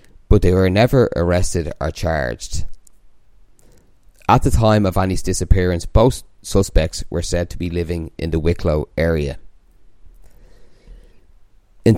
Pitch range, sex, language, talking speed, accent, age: 85-105 Hz, male, English, 125 wpm, Irish, 30-49